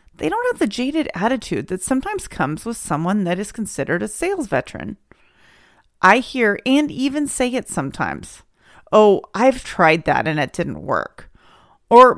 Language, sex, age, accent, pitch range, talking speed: English, female, 30-49, American, 175-275 Hz, 165 wpm